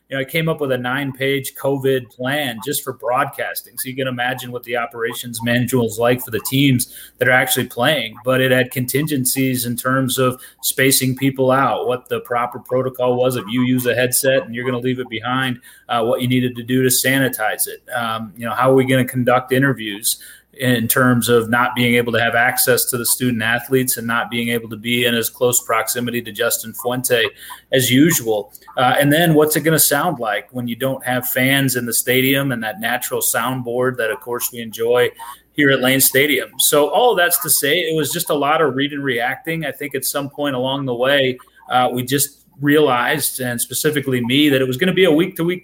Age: 30-49